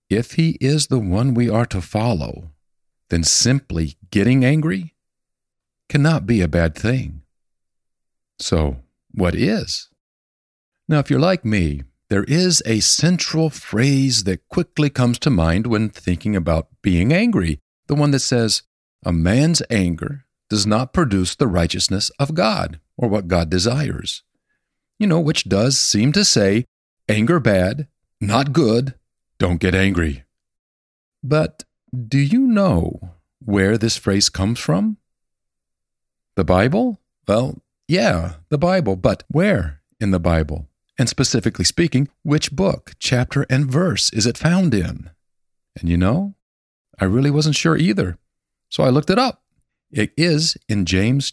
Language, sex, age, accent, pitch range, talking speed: English, male, 50-69, American, 90-145 Hz, 145 wpm